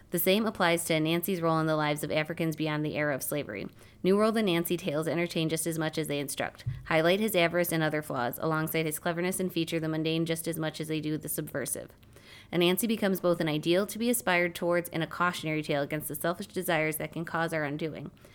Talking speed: 230 wpm